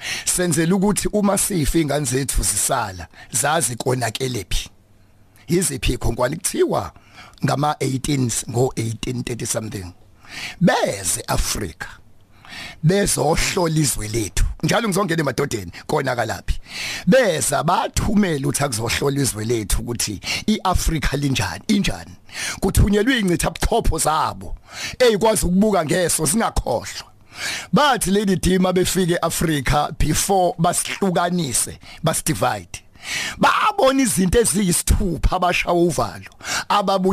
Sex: male